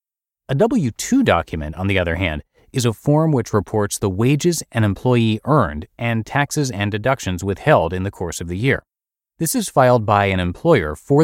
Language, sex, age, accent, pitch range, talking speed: English, male, 30-49, American, 95-125 Hz, 185 wpm